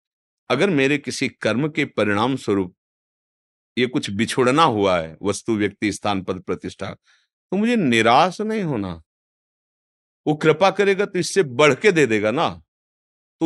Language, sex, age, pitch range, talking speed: Hindi, male, 50-69, 105-135 Hz, 145 wpm